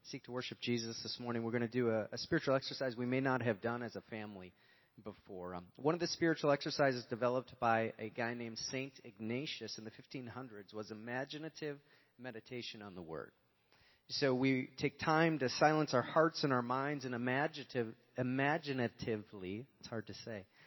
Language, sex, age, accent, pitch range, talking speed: English, male, 30-49, American, 115-145 Hz, 180 wpm